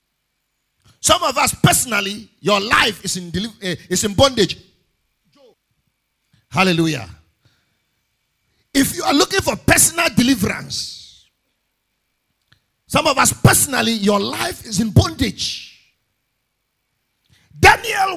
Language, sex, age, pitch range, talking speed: English, male, 50-69, 205-305 Hz, 100 wpm